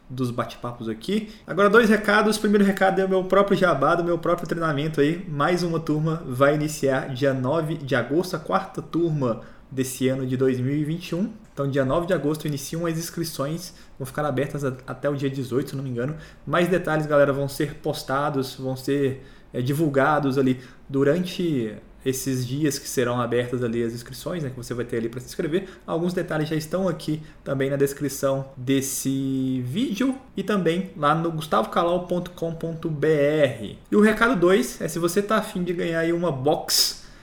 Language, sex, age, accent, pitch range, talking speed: Portuguese, male, 20-39, Brazilian, 135-175 Hz, 175 wpm